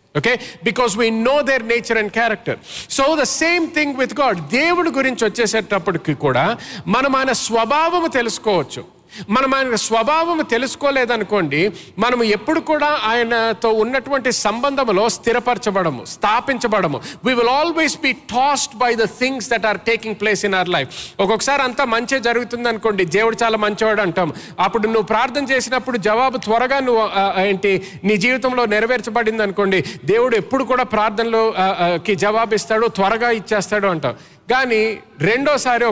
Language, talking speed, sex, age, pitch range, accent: English, 105 wpm, male, 50-69, 200-255 Hz, Indian